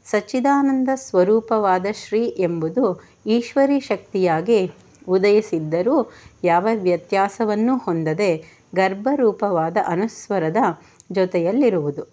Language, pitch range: Kannada, 175-235 Hz